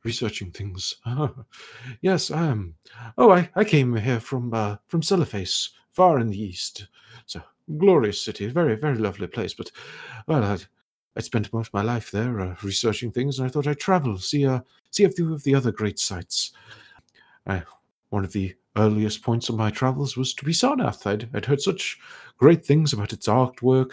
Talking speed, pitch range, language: 195 wpm, 105-145 Hz, English